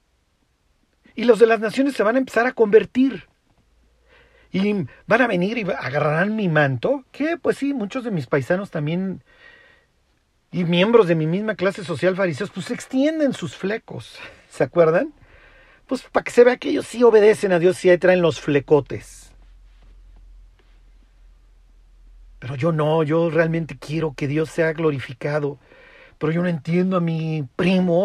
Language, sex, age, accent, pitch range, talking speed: Spanish, male, 50-69, Mexican, 115-185 Hz, 160 wpm